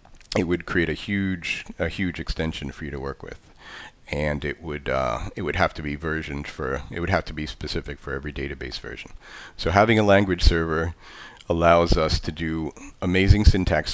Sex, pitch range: male, 75-90 Hz